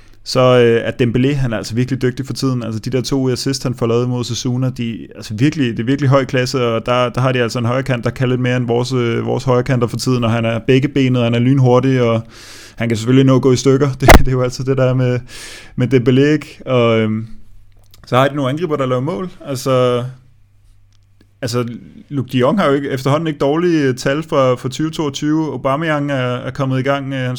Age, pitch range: 20-39, 120-140 Hz